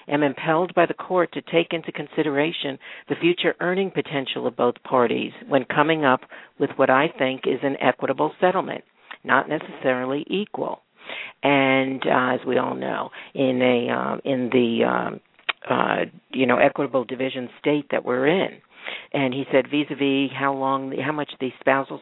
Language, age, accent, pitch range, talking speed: English, 50-69, American, 135-155 Hz, 170 wpm